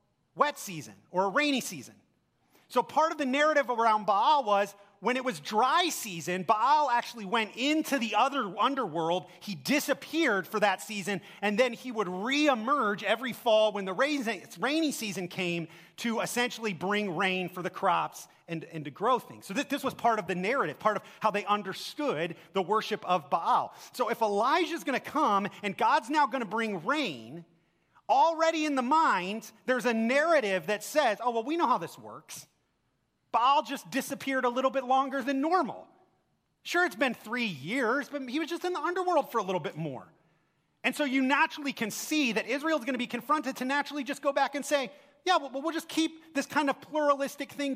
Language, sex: English, male